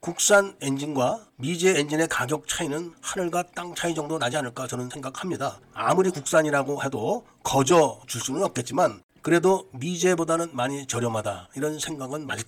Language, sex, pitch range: Korean, male, 140-185 Hz